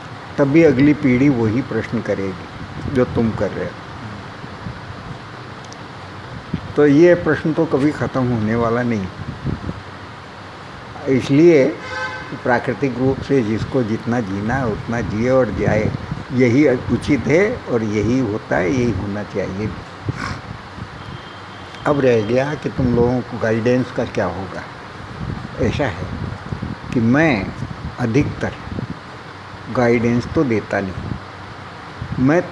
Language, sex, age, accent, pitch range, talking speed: Hindi, male, 60-79, native, 110-135 Hz, 115 wpm